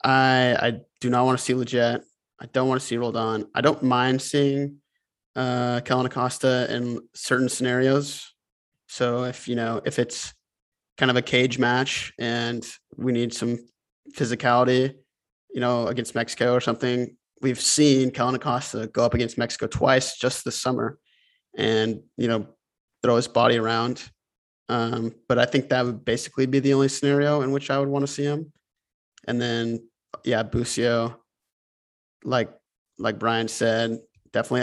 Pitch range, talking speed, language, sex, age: 115-130 Hz, 160 wpm, English, male, 20-39